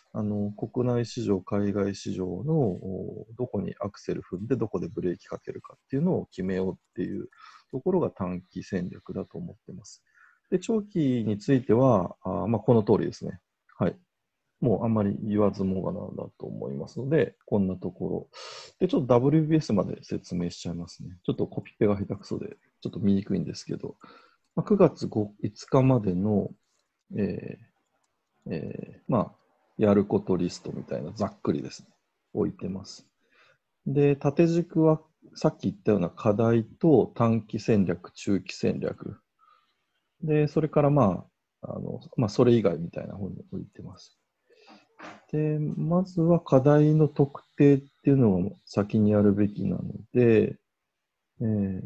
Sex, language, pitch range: male, Japanese, 100-150 Hz